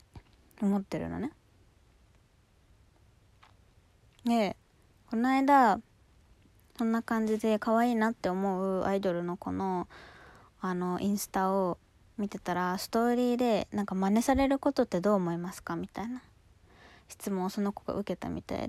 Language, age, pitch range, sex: Japanese, 20-39, 175-235 Hz, female